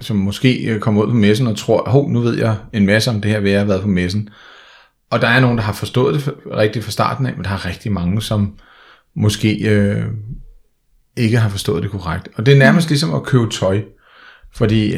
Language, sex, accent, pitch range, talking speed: Danish, male, native, 105-125 Hz, 230 wpm